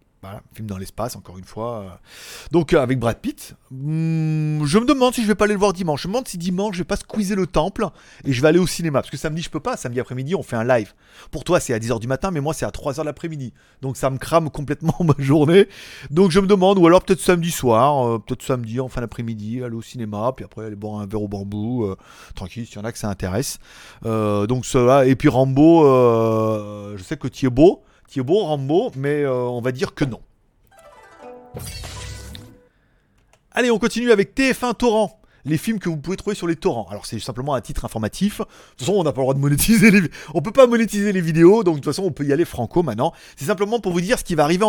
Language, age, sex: French, 30-49, male